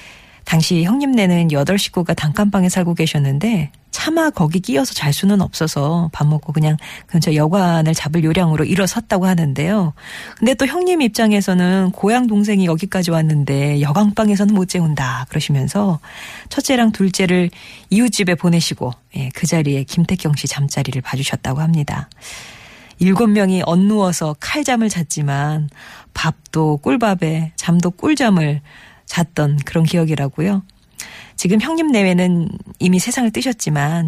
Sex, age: female, 40-59